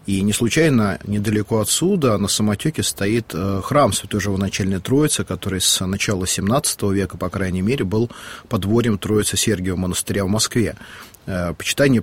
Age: 30-49